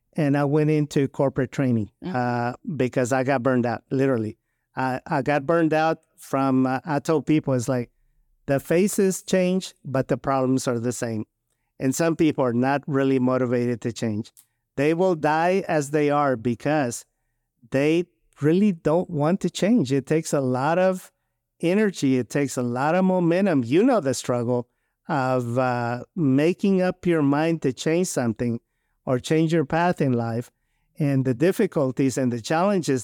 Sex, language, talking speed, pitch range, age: male, English, 170 wpm, 130-165 Hz, 50-69